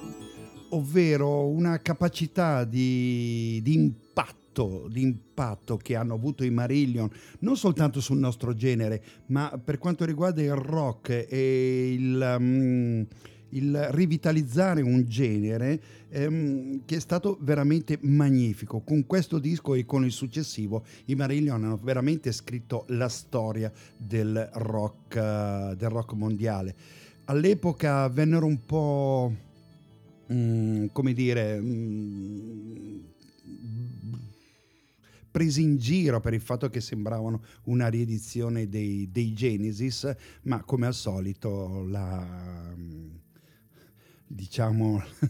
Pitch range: 105-135 Hz